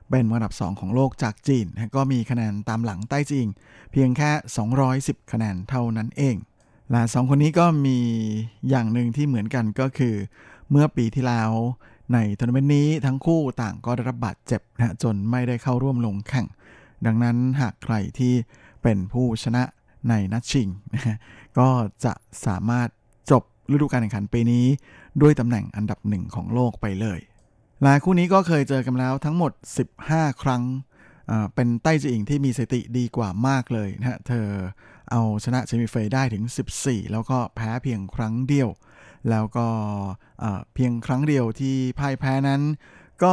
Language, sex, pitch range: Thai, male, 110-130 Hz